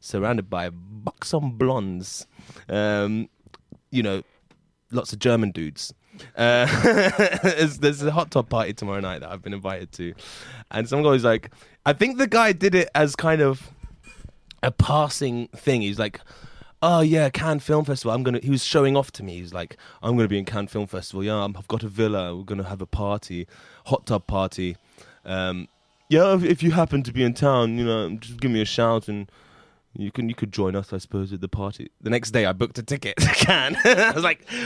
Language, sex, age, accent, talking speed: English, male, 20-39, British, 210 wpm